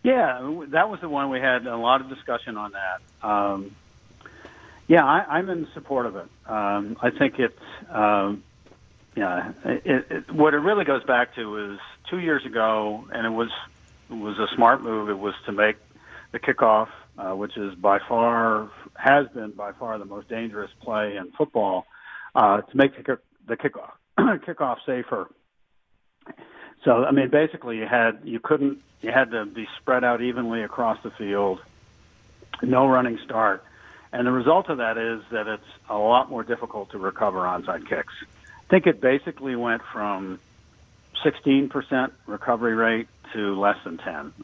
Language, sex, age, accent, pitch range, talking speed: English, male, 50-69, American, 105-130 Hz, 175 wpm